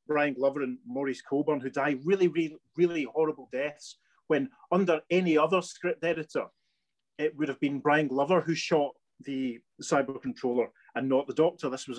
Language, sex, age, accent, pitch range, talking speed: English, male, 30-49, British, 125-155 Hz, 175 wpm